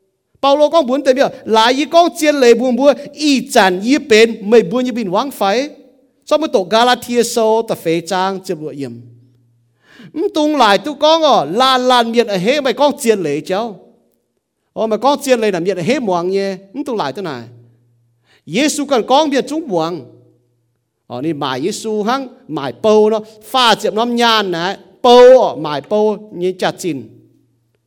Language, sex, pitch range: English, male, 165-260 Hz